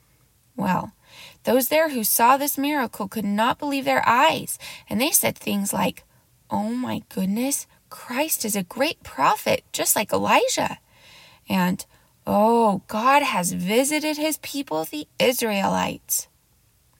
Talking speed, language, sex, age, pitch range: 130 wpm, English, female, 20-39, 200-285 Hz